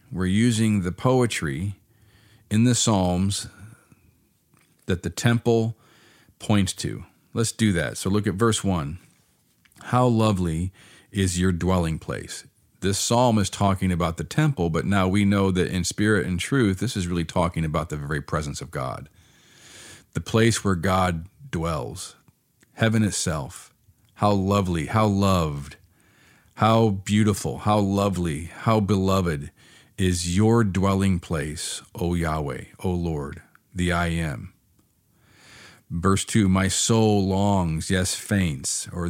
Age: 40-59